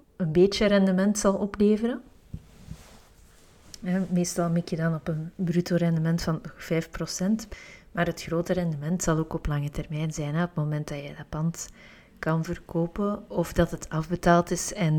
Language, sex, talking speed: Dutch, female, 165 wpm